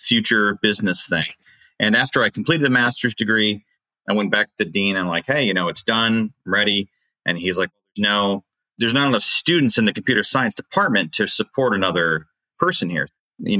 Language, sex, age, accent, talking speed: English, male, 30-49, American, 190 wpm